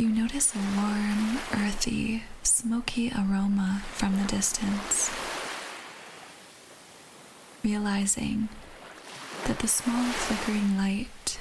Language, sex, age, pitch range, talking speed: English, female, 10-29, 200-225 Hz, 85 wpm